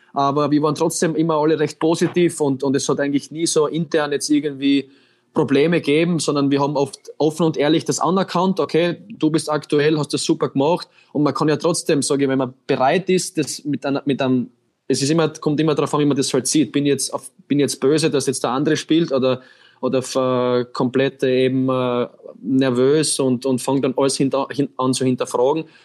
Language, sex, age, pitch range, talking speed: German, male, 20-39, 135-155 Hz, 210 wpm